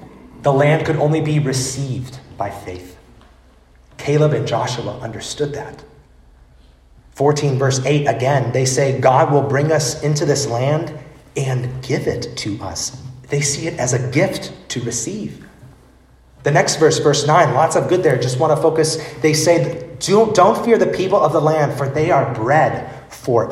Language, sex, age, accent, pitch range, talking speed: English, male, 30-49, American, 130-160 Hz, 170 wpm